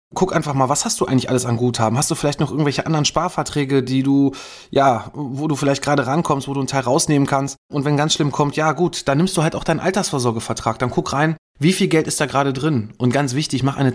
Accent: German